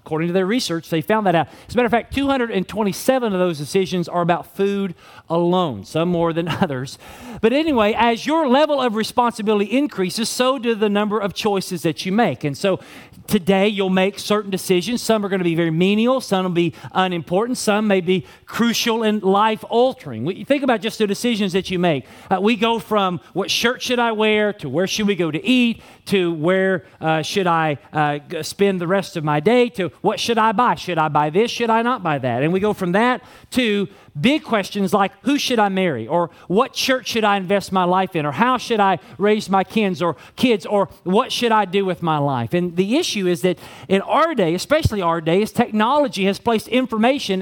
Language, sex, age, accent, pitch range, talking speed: English, male, 40-59, American, 175-225 Hz, 215 wpm